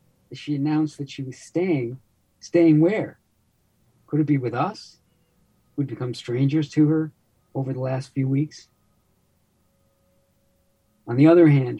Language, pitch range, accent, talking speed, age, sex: English, 125-150 Hz, American, 135 wpm, 50-69, male